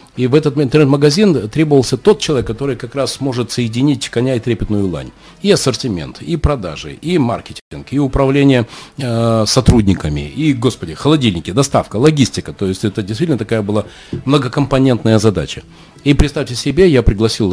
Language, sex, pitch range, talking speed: Russian, male, 100-140 Hz, 150 wpm